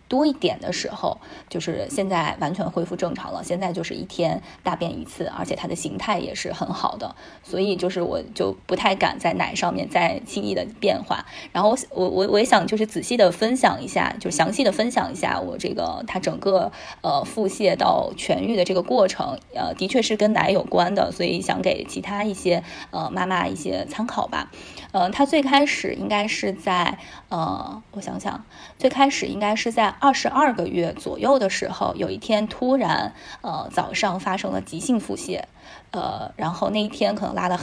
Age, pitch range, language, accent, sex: 20-39, 190-250 Hz, Chinese, native, female